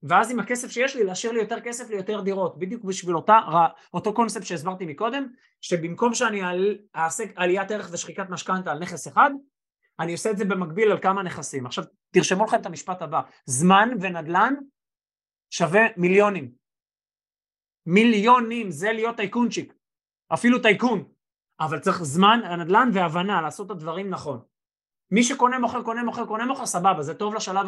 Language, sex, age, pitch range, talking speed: Hebrew, male, 20-39, 175-225 Hz, 160 wpm